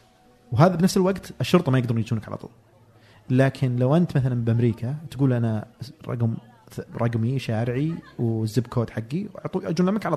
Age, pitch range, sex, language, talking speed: 40-59, 115-150 Hz, male, Arabic, 150 wpm